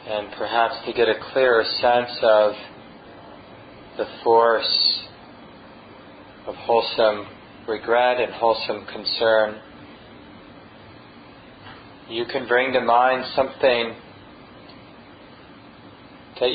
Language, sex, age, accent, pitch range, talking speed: English, male, 40-59, American, 110-120 Hz, 85 wpm